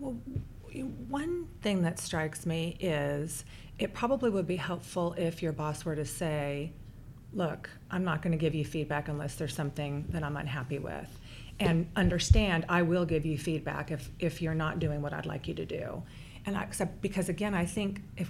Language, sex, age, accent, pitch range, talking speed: English, female, 40-59, American, 150-175 Hz, 190 wpm